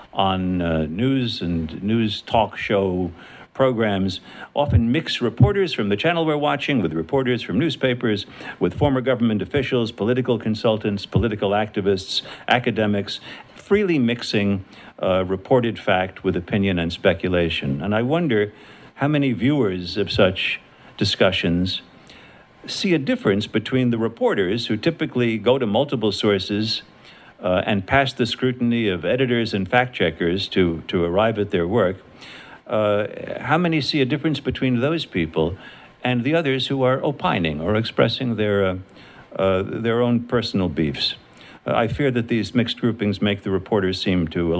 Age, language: 60-79, English